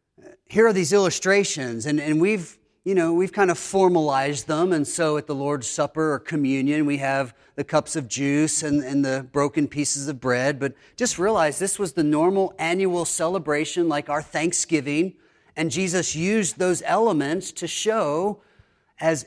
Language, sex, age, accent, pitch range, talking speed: English, male, 40-59, American, 130-165 Hz, 170 wpm